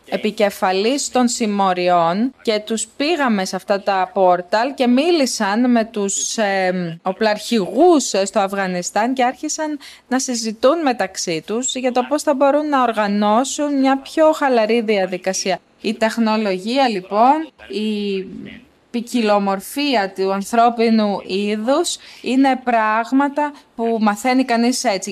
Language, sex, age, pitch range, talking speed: Greek, female, 20-39, 200-250 Hz, 115 wpm